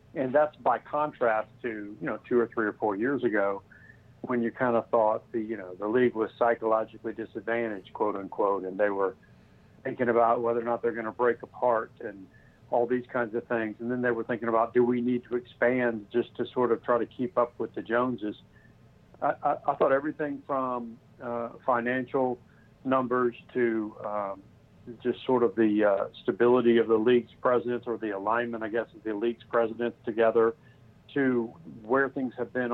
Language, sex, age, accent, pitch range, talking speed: English, male, 60-79, American, 110-125 Hz, 195 wpm